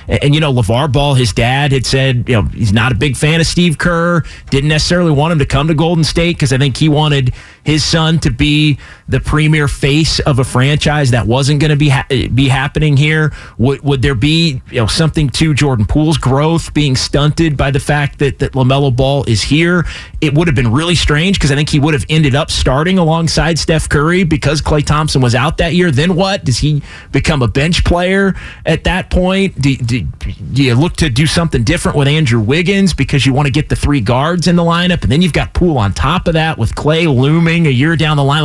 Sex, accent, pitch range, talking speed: male, American, 125-160 Hz, 235 wpm